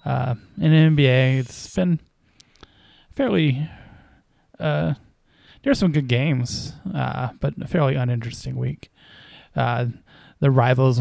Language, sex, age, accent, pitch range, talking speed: English, male, 20-39, American, 125-150 Hz, 115 wpm